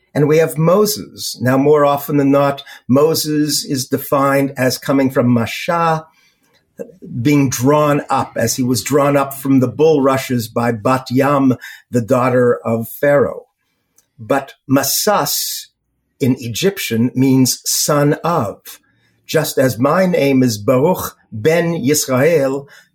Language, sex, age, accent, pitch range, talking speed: English, male, 50-69, American, 130-160 Hz, 125 wpm